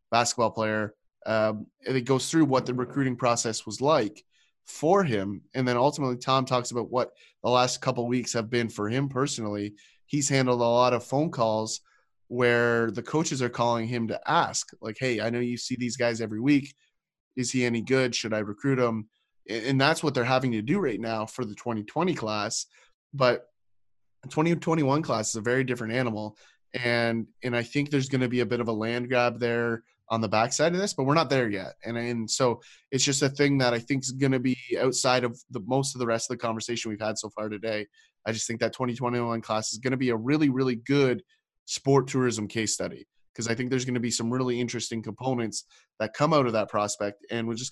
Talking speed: 220 wpm